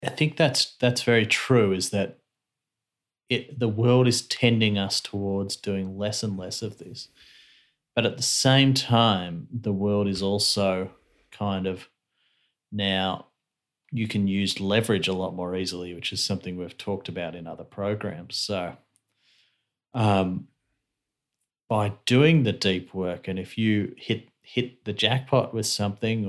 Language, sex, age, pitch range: English, male, 30-49, 95-120 Hz